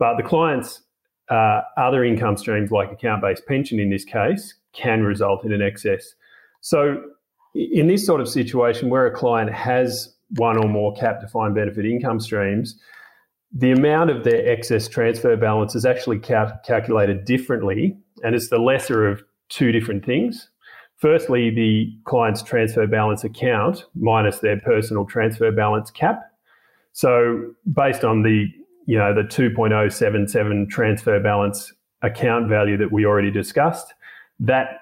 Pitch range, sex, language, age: 105-125 Hz, male, English, 30-49